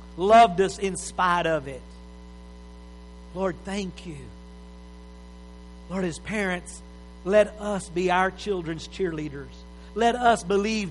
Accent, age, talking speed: American, 50-69, 115 wpm